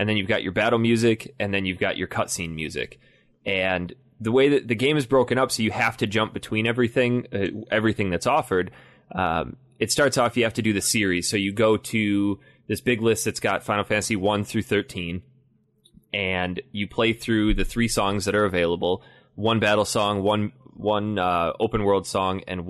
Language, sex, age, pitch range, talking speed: English, male, 20-39, 95-115 Hz, 205 wpm